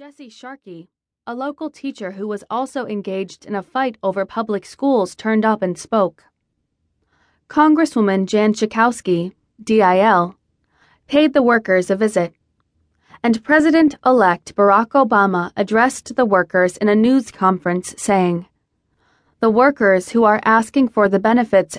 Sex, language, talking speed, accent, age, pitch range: female, English, 130 wpm, American, 20-39, 190-245 Hz